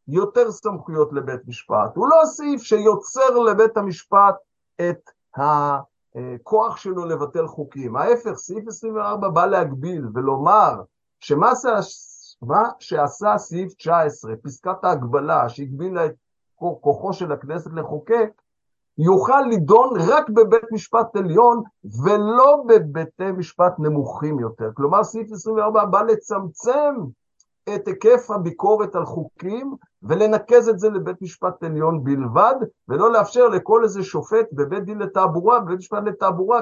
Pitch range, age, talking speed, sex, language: 150-220 Hz, 50-69, 120 wpm, male, Hebrew